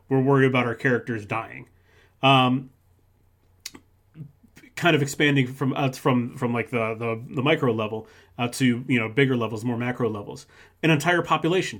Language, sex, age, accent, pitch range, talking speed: English, male, 30-49, American, 115-135 Hz, 165 wpm